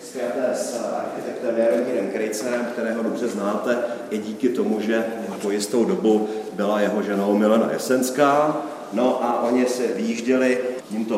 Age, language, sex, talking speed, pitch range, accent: 40-59, Czech, male, 140 wpm, 105-130 Hz, native